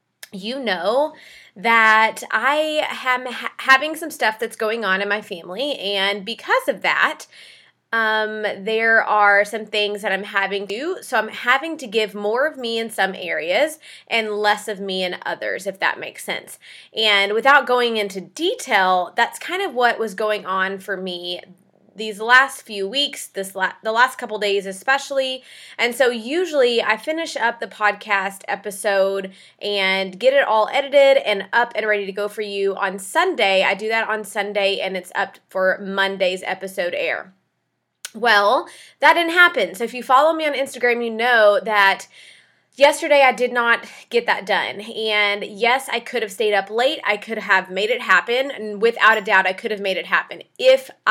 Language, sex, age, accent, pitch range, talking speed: English, female, 20-39, American, 200-255 Hz, 185 wpm